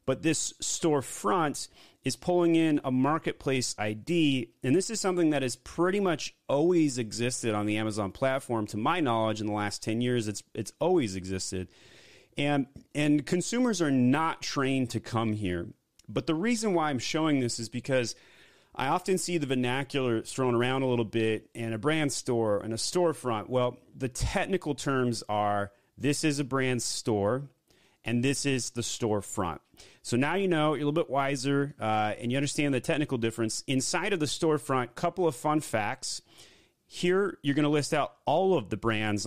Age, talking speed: 30-49, 180 wpm